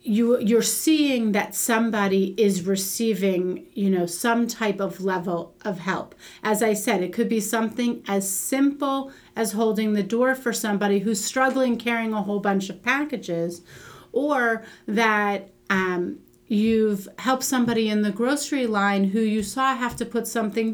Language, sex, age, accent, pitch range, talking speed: English, female, 40-59, American, 205-245 Hz, 160 wpm